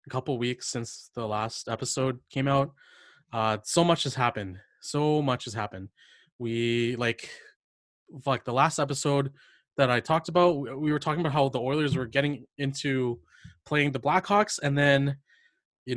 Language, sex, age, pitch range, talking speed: English, male, 20-39, 120-155 Hz, 170 wpm